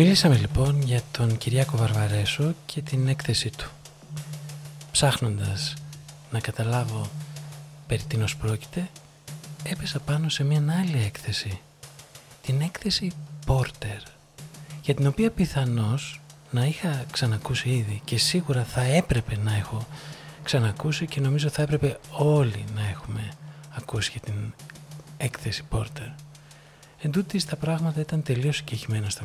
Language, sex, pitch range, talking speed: Greek, male, 120-150 Hz, 120 wpm